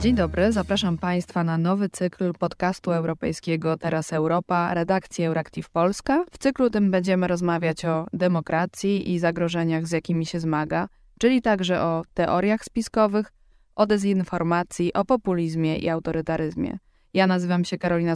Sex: female